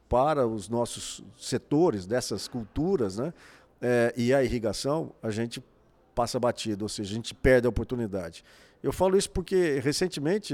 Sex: male